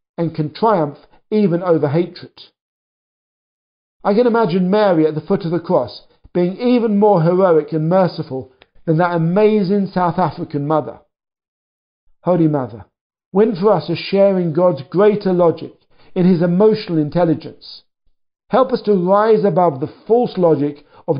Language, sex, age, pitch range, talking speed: English, male, 50-69, 160-205 Hz, 145 wpm